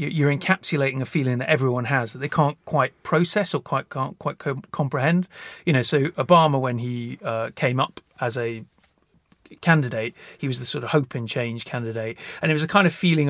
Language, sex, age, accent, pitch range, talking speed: English, male, 30-49, British, 125-155 Hz, 205 wpm